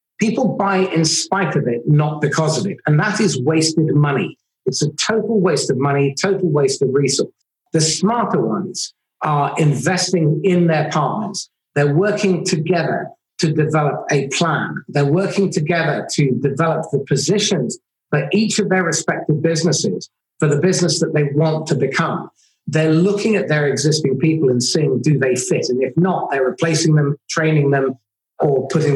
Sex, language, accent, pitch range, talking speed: male, English, British, 145-180 Hz, 170 wpm